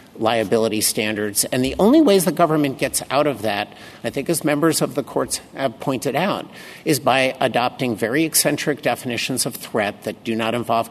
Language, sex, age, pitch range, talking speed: English, male, 50-69, 115-150 Hz, 185 wpm